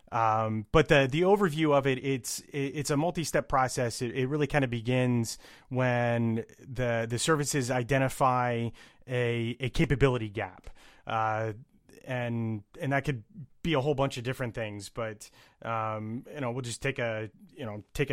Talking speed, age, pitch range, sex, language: 170 wpm, 30-49, 115-135 Hz, male, English